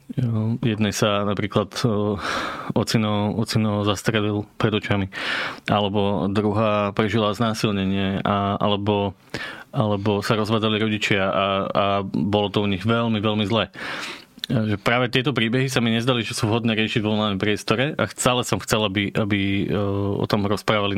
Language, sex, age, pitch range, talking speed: Slovak, male, 20-39, 105-120 Hz, 135 wpm